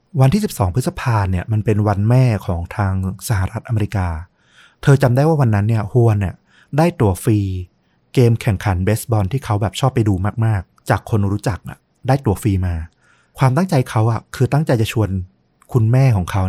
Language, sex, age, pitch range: Thai, male, 30-49, 95-125 Hz